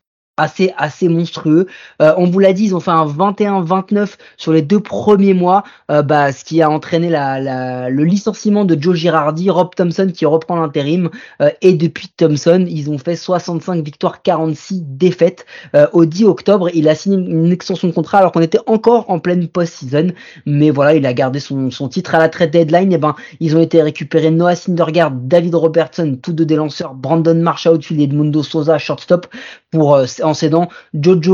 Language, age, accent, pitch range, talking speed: French, 20-39, French, 155-195 Hz, 195 wpm